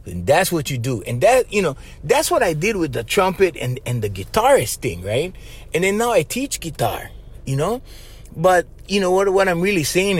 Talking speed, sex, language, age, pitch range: 225 wpm, male, English, 30-49, 130-195 Hz